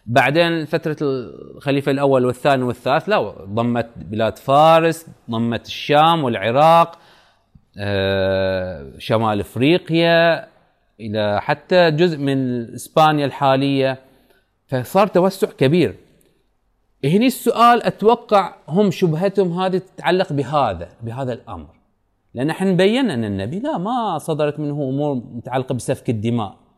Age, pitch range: 30-49, 110-175 Hz